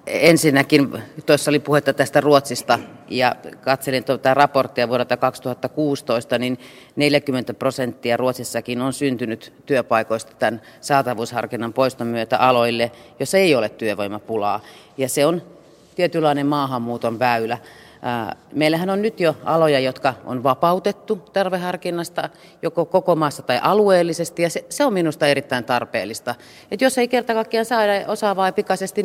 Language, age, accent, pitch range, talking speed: Finnish, 30-49, native, 130-185 Hz, 130 wpm